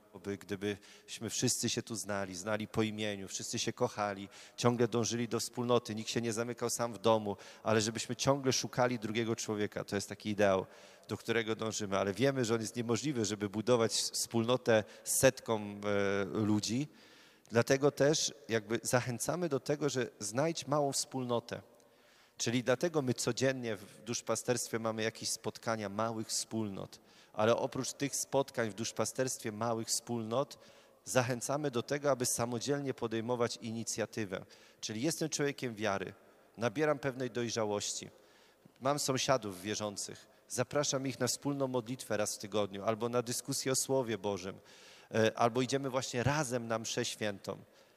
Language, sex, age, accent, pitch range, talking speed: Polish, male, 30-49, native, 110-135 Hz, 145 wpm